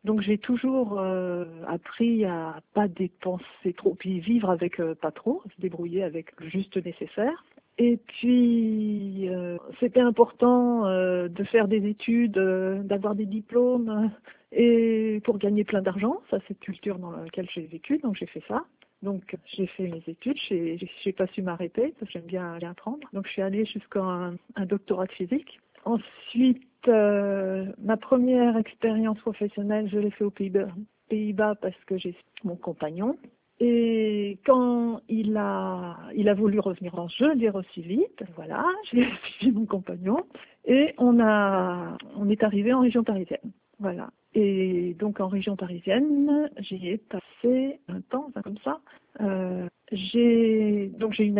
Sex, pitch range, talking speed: female, 185-235 Hz, 160 wpm